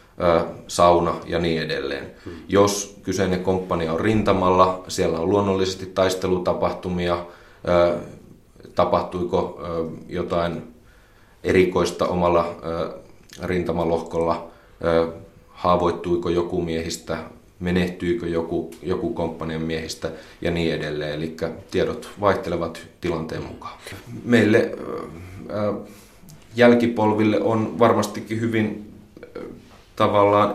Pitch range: 85-100 Hz